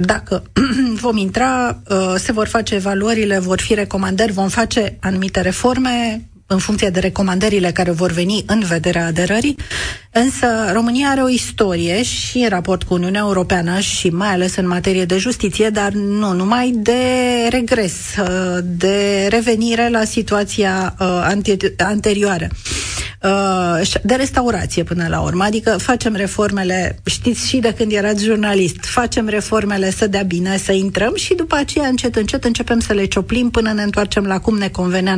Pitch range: 190-230 Hz